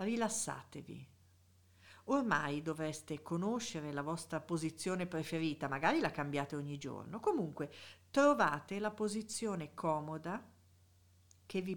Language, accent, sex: Italian, native, female